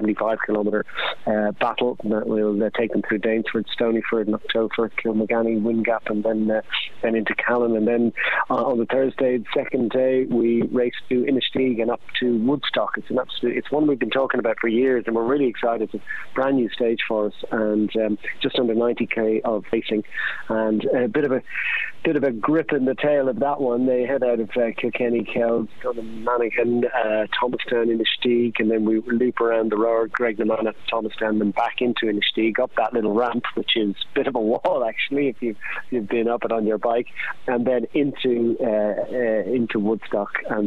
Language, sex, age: English, male, 40-59